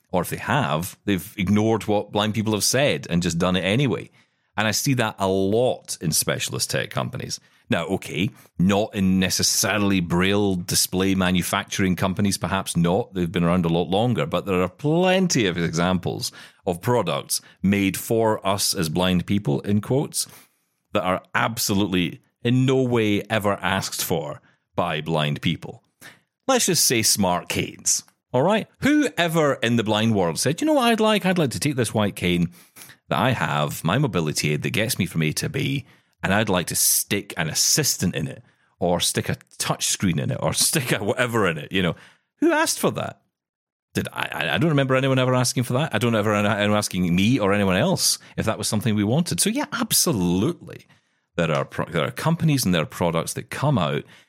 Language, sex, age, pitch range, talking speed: English, male, 40-59, 95-140 Hz, 195 wpm